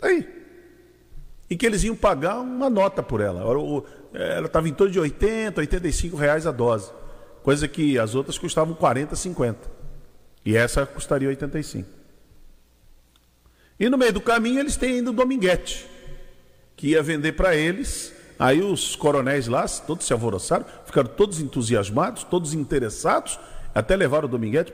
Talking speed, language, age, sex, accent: 150 wpm, Portuguese, 50-69, male, Brazilian